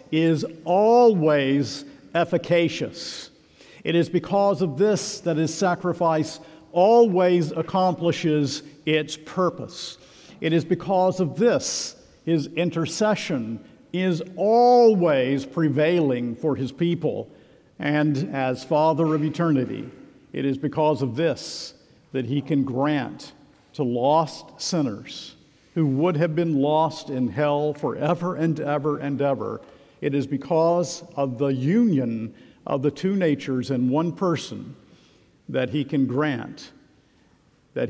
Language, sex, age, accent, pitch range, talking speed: English, male, 50-69, American, 145-180 Hz, 120 wpm